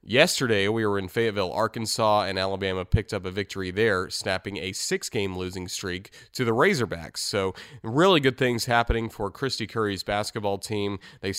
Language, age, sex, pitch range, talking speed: English, 30-49, male, 95-115 Hz, 170 wpm